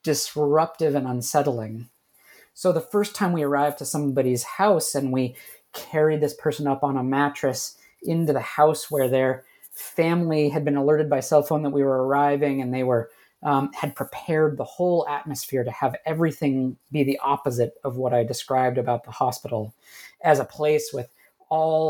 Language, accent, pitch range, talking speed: English, American, 130-160 Hz, 175 wpm